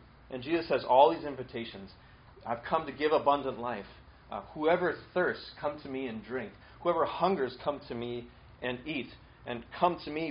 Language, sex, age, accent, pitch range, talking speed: English, male, 30-49, American, 115-150 Hz, 180 wpm